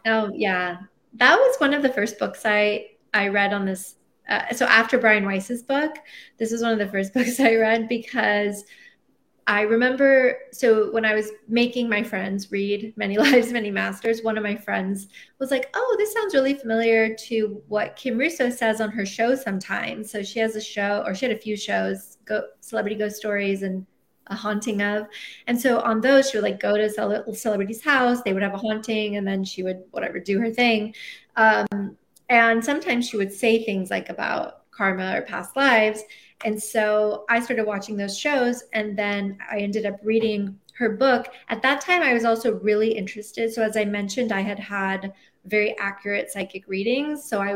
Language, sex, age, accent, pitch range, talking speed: English, female, 30-49, American, 205-235 Hz, 195 wpm